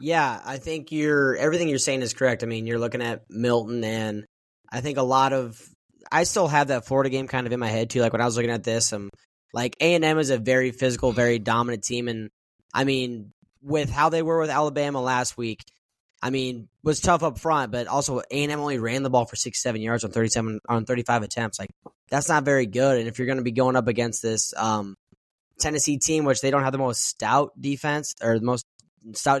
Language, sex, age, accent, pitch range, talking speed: English, male, 10-29, American, 115-140 Hz, 225 wpm